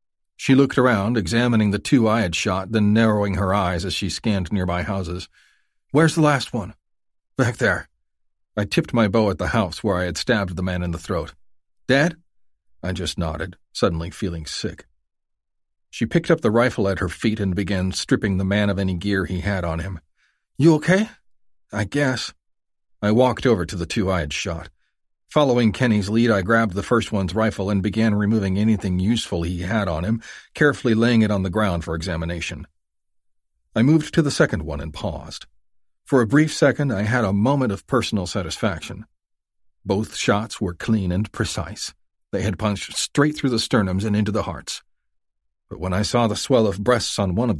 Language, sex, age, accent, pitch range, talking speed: English, male, 40-59, American, 90-115 Hz, 195 wpm